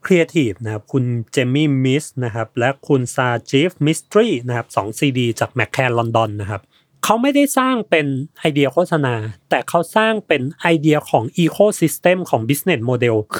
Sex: male